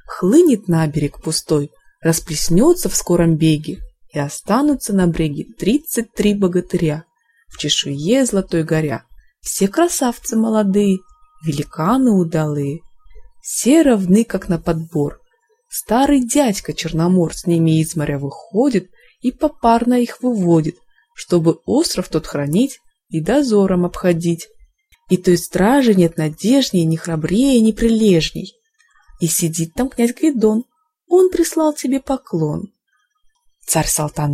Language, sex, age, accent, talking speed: Russian, female, 20-39, native, 120 wpm